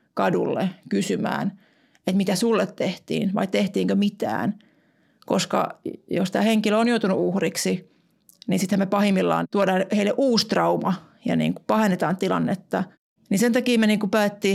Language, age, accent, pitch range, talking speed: Finnish, 30-49, native, 185-215 Hz, 145 wpm